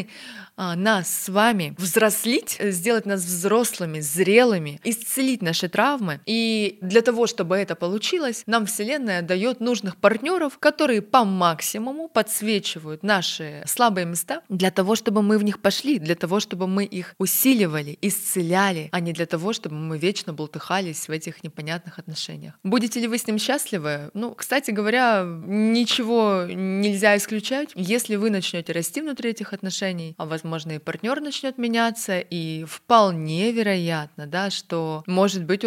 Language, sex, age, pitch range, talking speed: Russian, female, 20-39, 175-225 Hz, 145 wpm